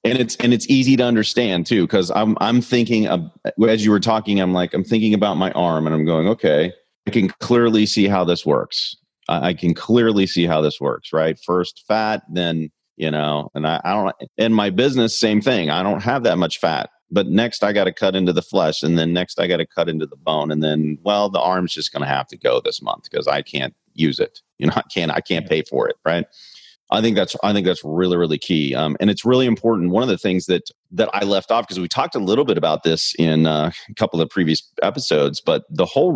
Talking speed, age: 250 wpm, 40-59